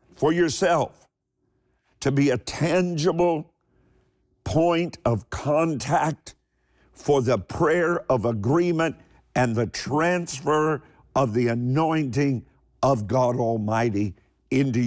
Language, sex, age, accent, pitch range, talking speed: English, male, 50-69, American, 115-145 Hz, 95 wpm